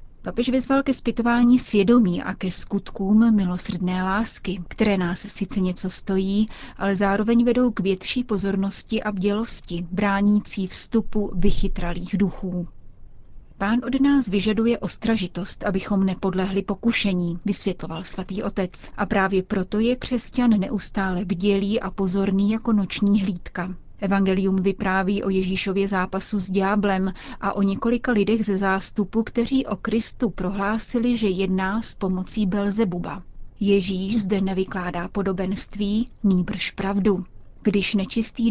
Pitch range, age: 190-220 Hz, 30-49